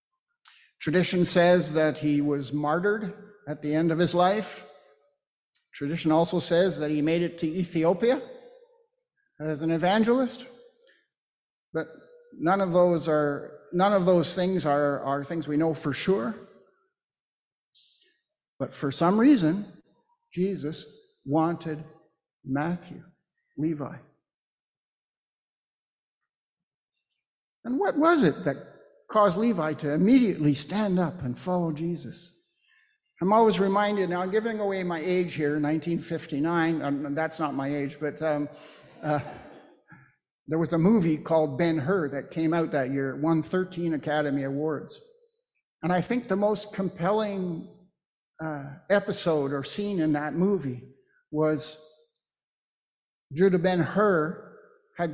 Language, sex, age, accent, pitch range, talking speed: English, male, 50-69, American, 155-205 Hz, 125 wpm